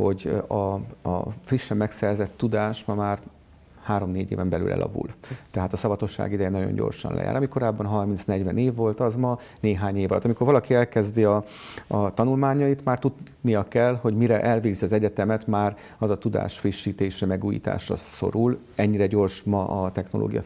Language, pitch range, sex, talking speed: Hungarian, 105-115 Hz, male, 160 wpm